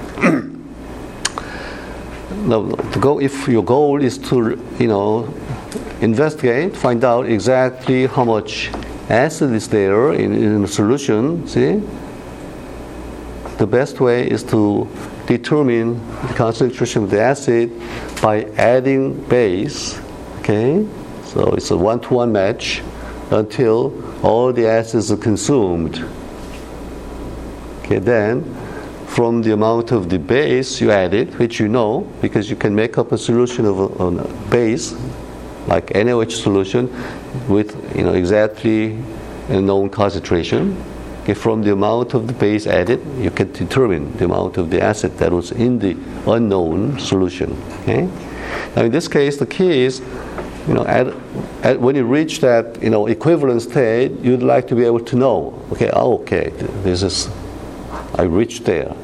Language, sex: Korean, male